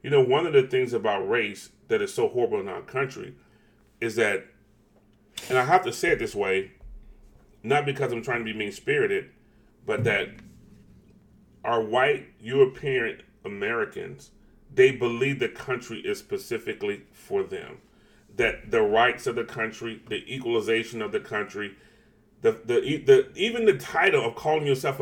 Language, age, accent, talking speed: English, 30-49, American, 160 wpm